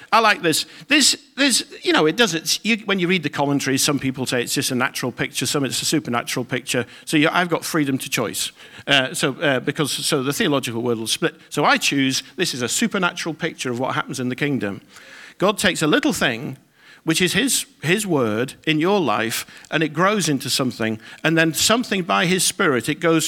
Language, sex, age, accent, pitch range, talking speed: English, male, 50-69, British, 140-225 Hz, 220 wpm